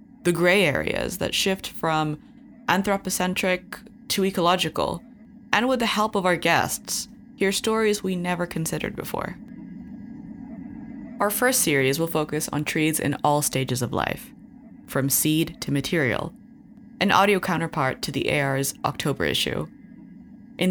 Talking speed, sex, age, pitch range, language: 135 wpm, female, 20-39, 150-225 Hz, English